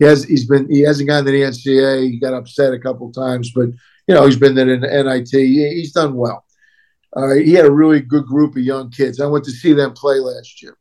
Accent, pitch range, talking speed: American, 130-145 Hz, 260 wpm